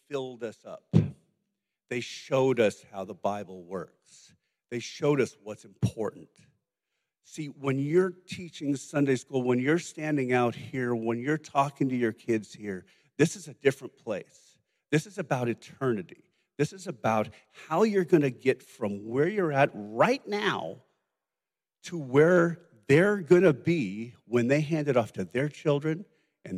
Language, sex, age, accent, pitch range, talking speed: English, male, 50-69, American, 115-170 Hz, 160 wpm